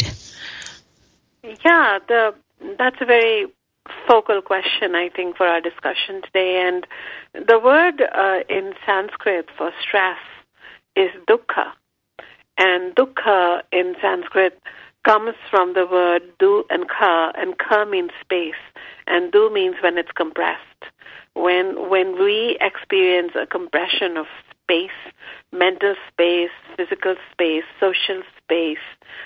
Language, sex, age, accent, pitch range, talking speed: English, female, 50-69, Indian, 175-275 Hz, 120 wpm